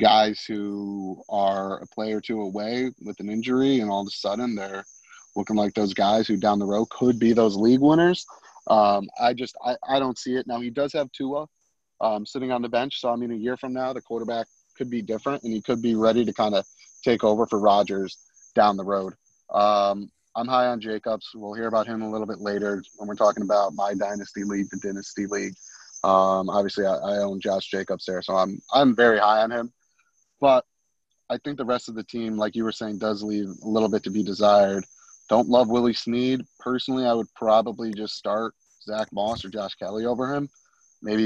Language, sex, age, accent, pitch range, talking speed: English, male, 30-49, American, 100-125 Hz, 220 wpm